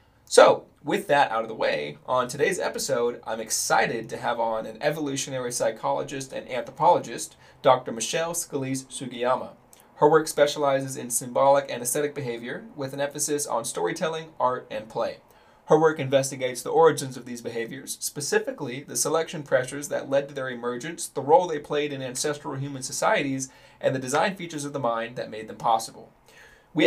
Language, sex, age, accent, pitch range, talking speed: English, male, 20-39, American, 125-155 Hz, 170 wpm